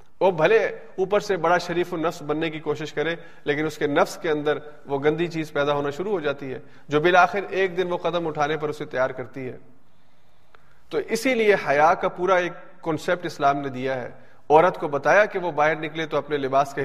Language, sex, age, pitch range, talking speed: Urdu, male, 40-59, 145-185 Hz, 220 wpm